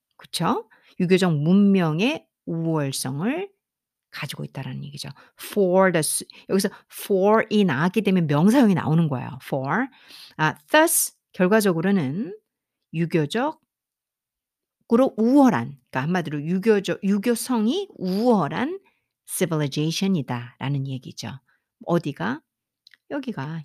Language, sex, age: Korean, female, 50-69